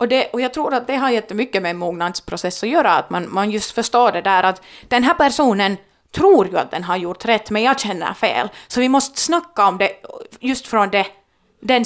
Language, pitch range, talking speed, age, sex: Finnish, 195-255 Hz, 230 wpm, 30-49, female